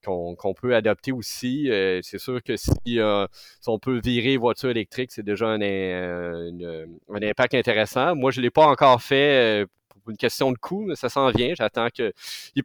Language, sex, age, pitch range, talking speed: French, male, 30-49, 105-135 Hz, 210 wpm